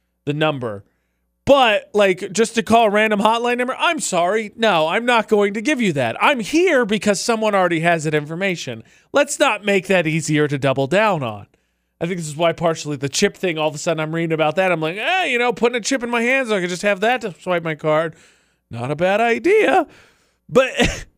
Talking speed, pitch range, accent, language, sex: 225 wpm, 150-225 Hz, American, English, male